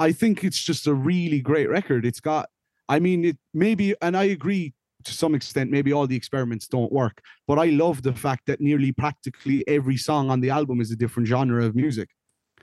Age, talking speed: 30-49, 215 wpm